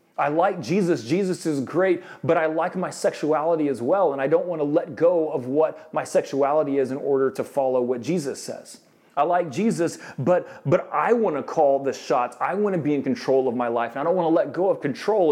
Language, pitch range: English, 120-170 Hz